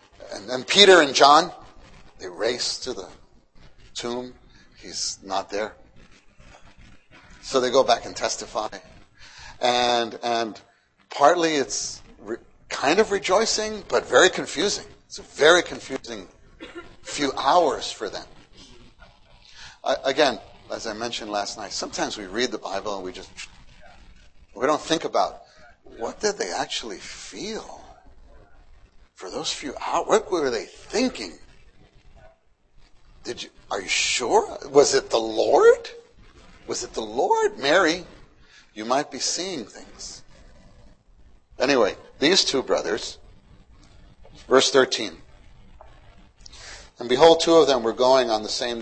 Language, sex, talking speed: English, male, 130 wpm